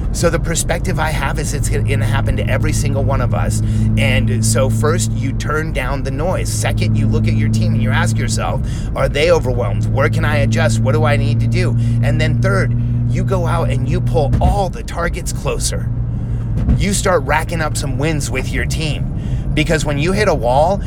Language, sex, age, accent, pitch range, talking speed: English, male, 30-49, American, 80-125 Hz, 215 wpm